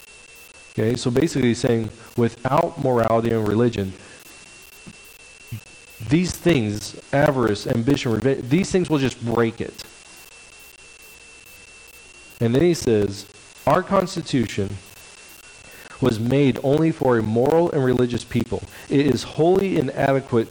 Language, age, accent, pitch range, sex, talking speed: English, 40-59, American, 115-140 Hz, male, 115 wpm